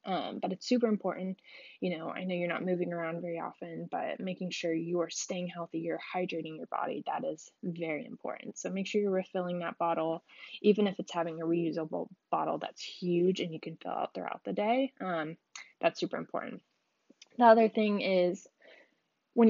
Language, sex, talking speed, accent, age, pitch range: English, female, 195 wpm, American, 10-29, 175-205 Hz